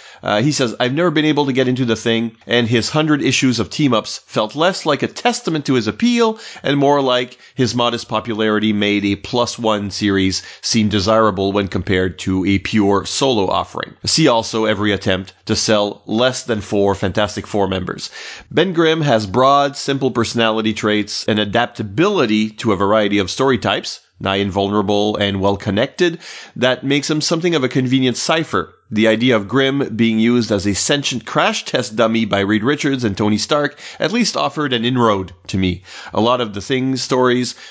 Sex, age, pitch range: male, 30-49, 105-130 Hz